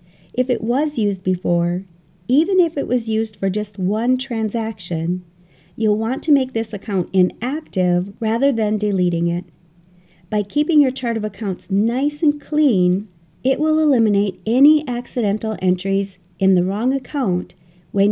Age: 40-59